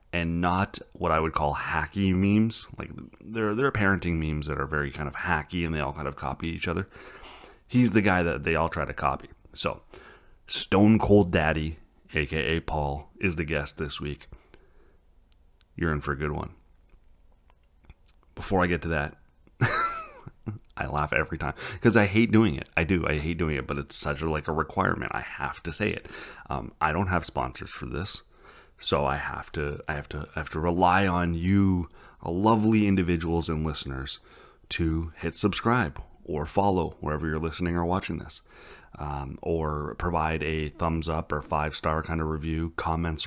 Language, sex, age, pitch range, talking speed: English, male, 30-49, 75-95 Hz, 185 wpm